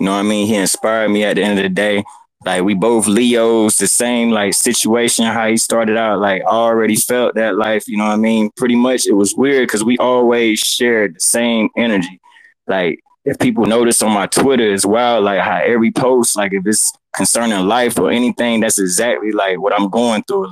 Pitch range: 105-120 Hz